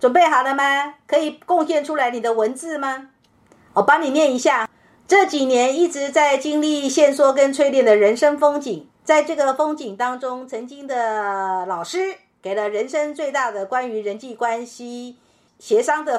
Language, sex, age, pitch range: Chinese, female, 50-69, 200-280 Hz